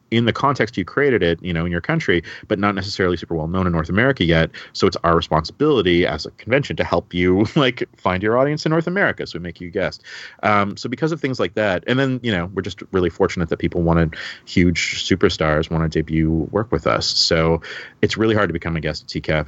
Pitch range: 80-105 Hz